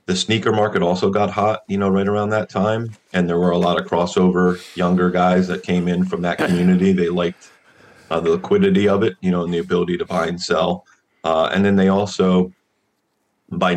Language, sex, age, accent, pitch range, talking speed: English, male, 30-49, American, 90-105 Hz, 215 wpm